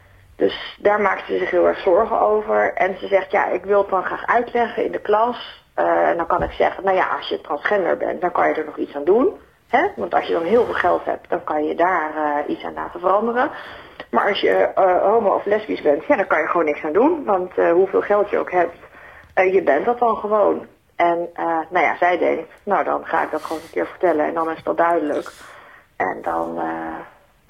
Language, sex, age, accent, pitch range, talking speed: Dutch, female, 30-49, Dutch, 160-205 Hz, 245 wpm